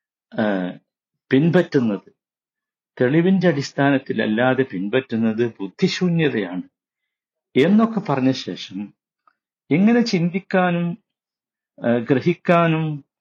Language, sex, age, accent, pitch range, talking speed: Malayalam, male, 50-69, native, 115-185 Hz, 50 wpm